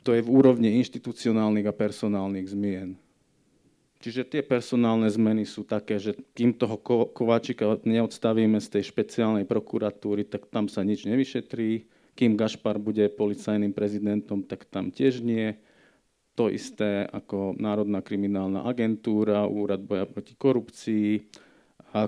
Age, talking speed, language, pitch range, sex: 40-59, 130 wpm, Slovak, 105-115 Hz, male